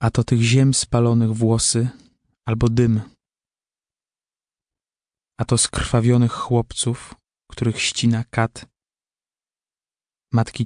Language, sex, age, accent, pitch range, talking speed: Polish, male, 20-39, native, 110-125 Hz, 90 wpm